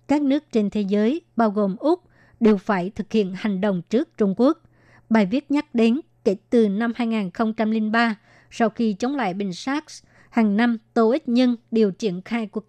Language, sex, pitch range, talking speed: Vietnamese, male, 210-240 Hz, 190 wpm